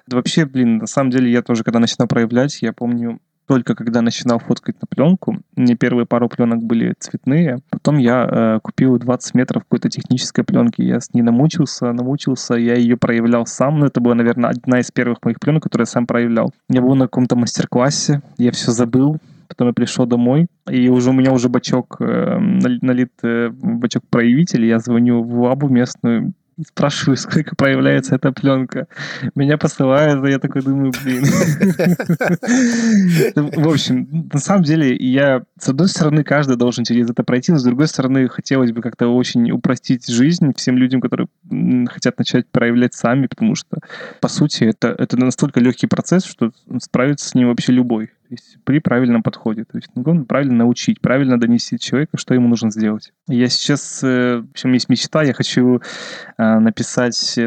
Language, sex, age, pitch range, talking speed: Russian, male, 20-39, 120-145 Hz, 175 wpm